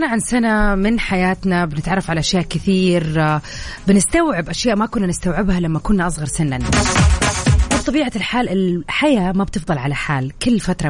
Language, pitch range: Arabic, 165-225 Hz